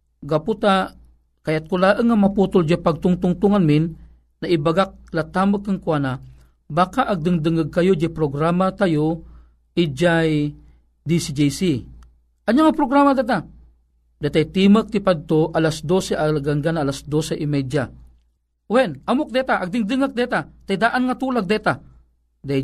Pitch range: 145-205 Hz